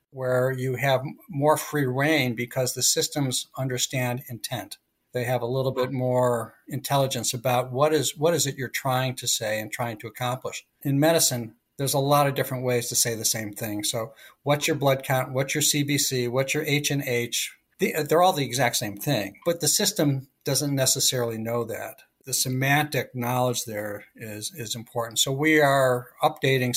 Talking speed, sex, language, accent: 180 wpm, male, English, American